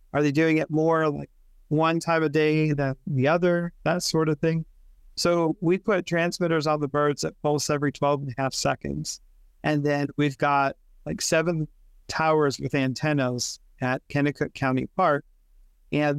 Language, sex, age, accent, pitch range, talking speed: English, male, 40-59, American, 135-160 Hz, 170 wpm